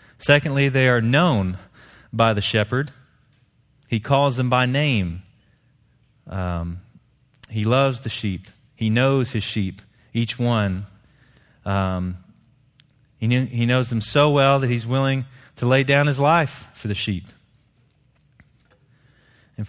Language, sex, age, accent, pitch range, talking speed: English, male, 30-49, American, 100-125 Hz, 130 wpm